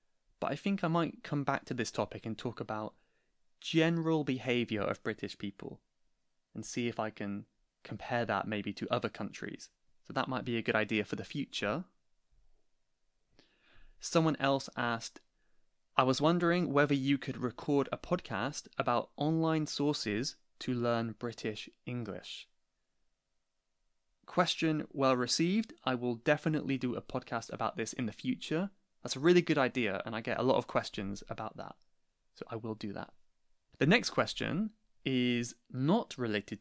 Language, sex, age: English, male, 20-39